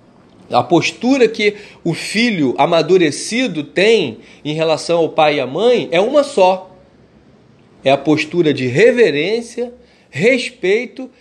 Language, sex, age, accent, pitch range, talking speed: Portuguese, male, 40-59, Brazilian, 170-235 Hz, 125 wpm